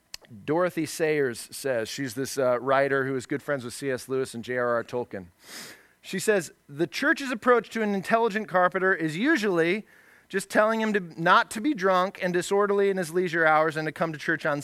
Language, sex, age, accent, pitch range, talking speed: English, male, 30-49, American, 170-235 Hz, 195 wpm